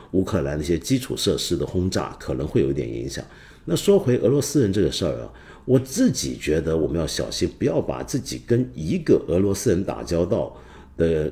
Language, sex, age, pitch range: Chinese, male, 50-69, 90-135 Hz